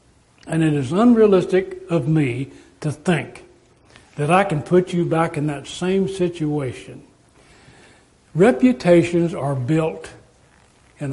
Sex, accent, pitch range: male, American, 140-185 Hz